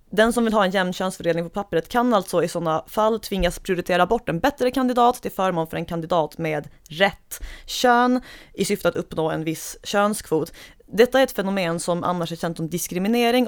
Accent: native